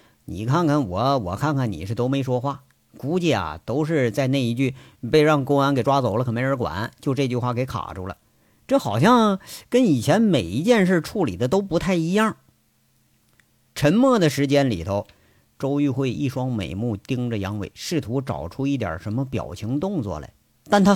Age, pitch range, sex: 50-69, 110-160 Hz, male